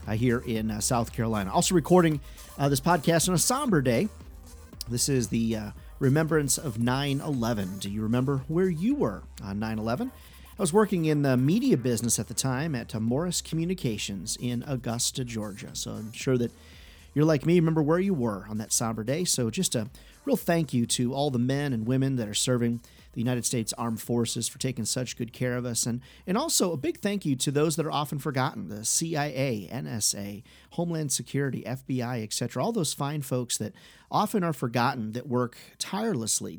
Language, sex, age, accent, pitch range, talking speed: English, male, 40-59, American, 115-165 Hz, 195 wpm